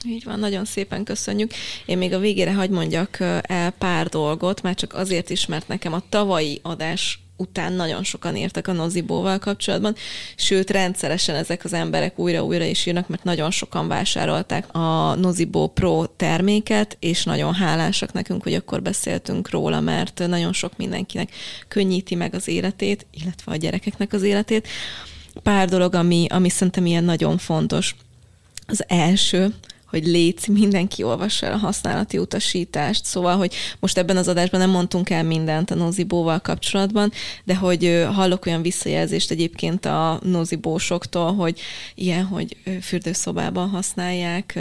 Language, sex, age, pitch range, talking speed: Hungarian, female, 20-39, 170-190 Hz, 150 wpm